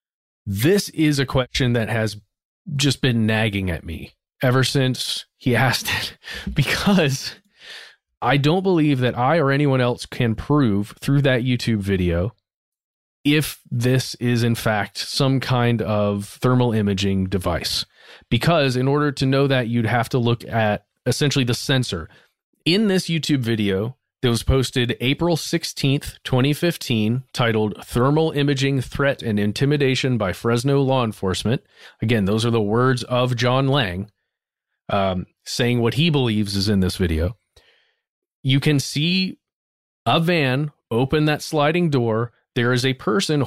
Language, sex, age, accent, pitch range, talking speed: English, male, 30-49, American, 110-140 Hz, 145 wpm